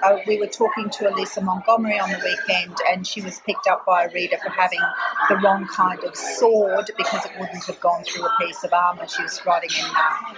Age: 40-59